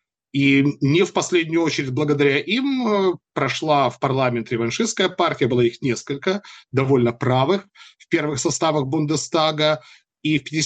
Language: Russian